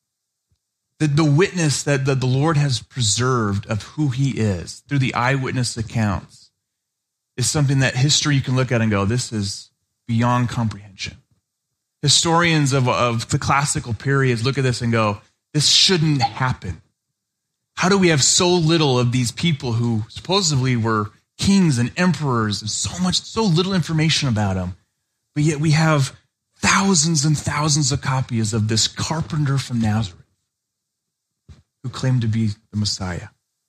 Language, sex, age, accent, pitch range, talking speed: English, male, 30-49, American, 110-145 Hz, 150 wpm